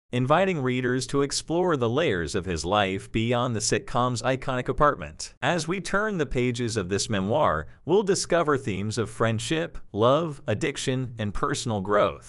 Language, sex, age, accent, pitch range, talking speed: English, male, 40-59, American, 110-145 Hz, 155 wpm